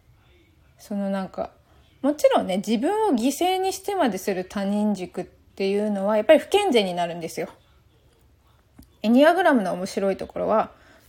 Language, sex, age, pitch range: Japanese, female, 20-39, 200-270 Hz